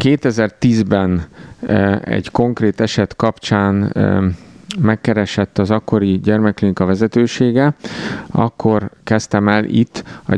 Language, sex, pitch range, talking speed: Hungarian, male, 95-105 Hz, 85 wpm